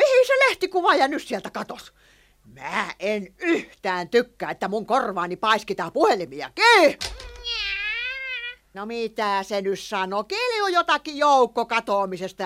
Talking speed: 120 wpm